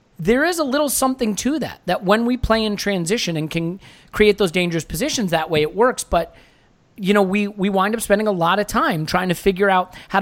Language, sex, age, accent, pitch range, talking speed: English, male, 30-49, American, 165-220 Hz, 235 wpm